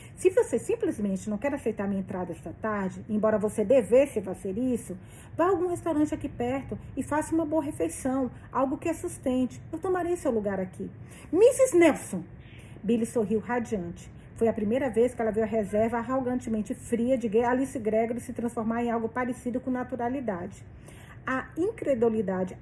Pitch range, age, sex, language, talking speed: 220-310 Hz, 40-59, female, Portuguese, 165 wpm